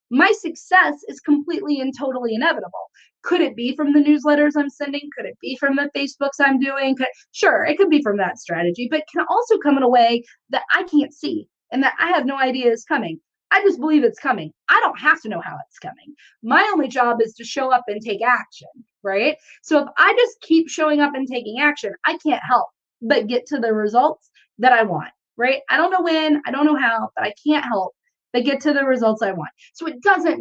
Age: 30-49